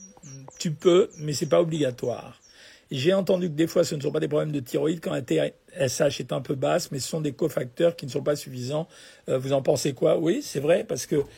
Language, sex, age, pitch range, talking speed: French, male, 50-69, 135-165 Hz, 250 wpm